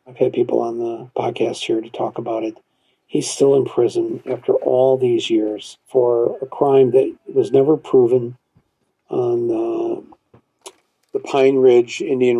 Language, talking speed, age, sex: English, 155 wpm, 50-69, male